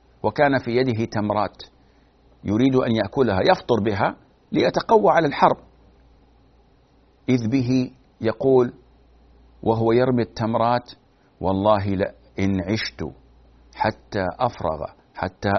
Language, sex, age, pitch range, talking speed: Arabic, male, 60-79, 90-135 Hz, 95 wpm